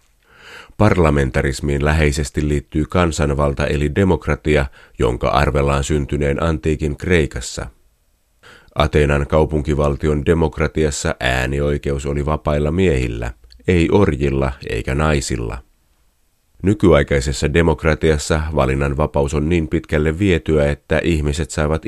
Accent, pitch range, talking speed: native, 70-80 Hz, 90 wpm